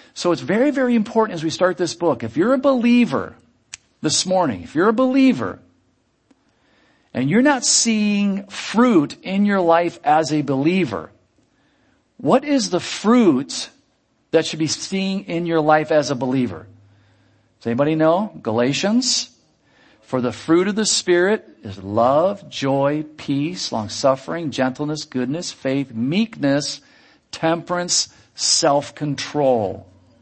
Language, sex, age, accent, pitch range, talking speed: English, male, 50-69, American, 130-210 Hz, 130 wpm